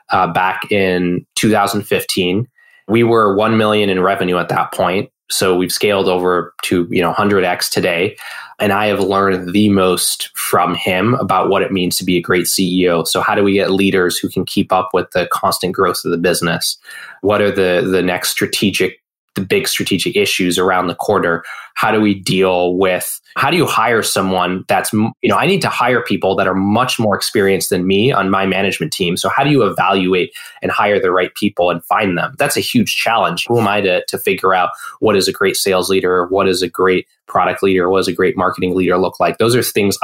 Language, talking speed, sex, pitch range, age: English, 215 wpm, male, 90-100 Hz, 20-39